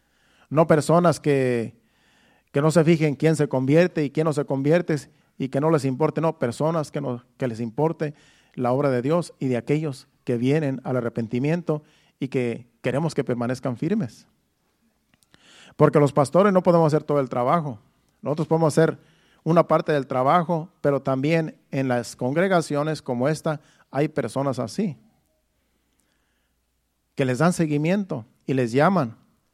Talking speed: 155 wpm